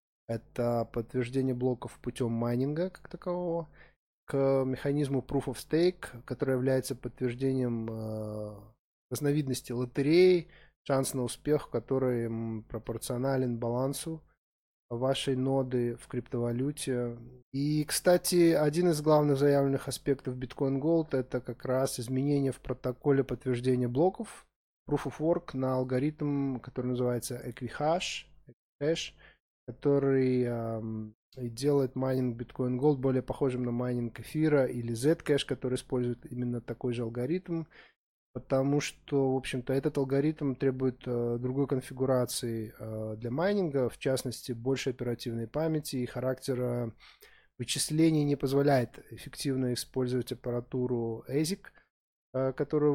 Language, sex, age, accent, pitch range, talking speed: Russian, male, 20-39, native, 120-140 Hz, 110 wpm